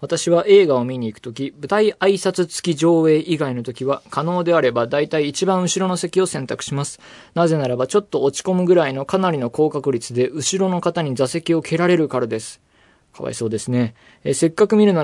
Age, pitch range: 20-39, 125-180 Hz